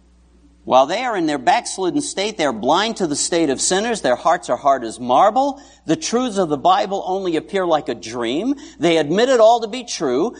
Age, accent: 60-79, American